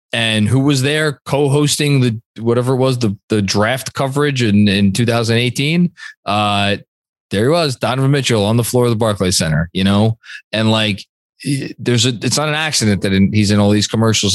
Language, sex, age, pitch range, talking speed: English, male, 20-39, 110-150 Hz, 190 wpm